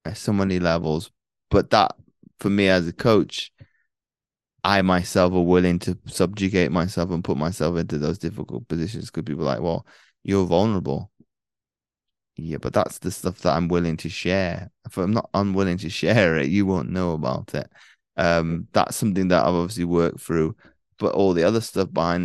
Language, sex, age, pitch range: English, male, 20-39, 85-95 Hz